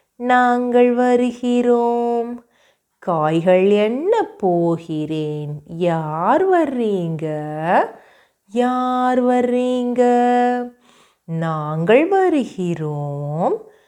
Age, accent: 30-49, native